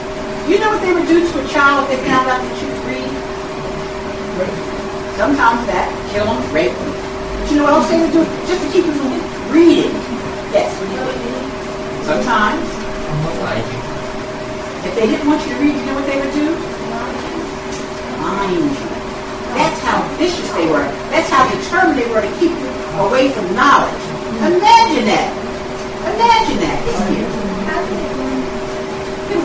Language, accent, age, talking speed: English, American, 50-69, 155 wpm